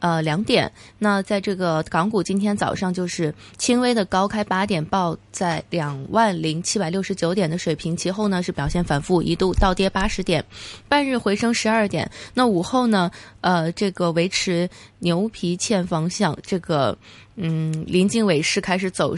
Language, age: Chinese, 20-39